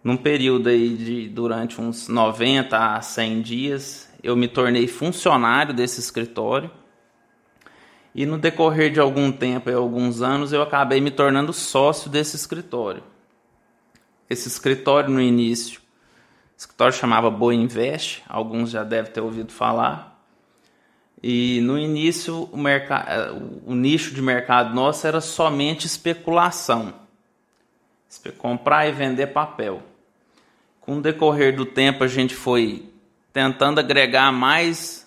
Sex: male